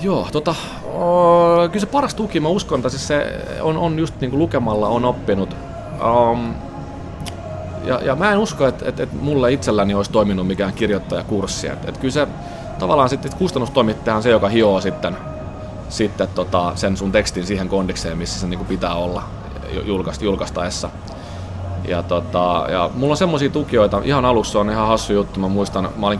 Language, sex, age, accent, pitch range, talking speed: Finnish, male, 30-49, native, 90-115 Hz, 175 wpm